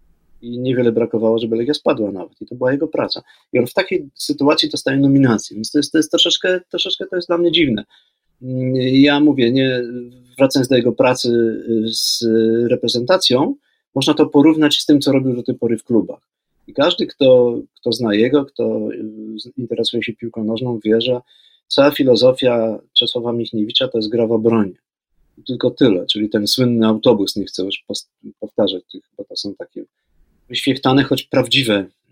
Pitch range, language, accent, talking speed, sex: 115-135 Hz, Polish, native, 170 wpm, male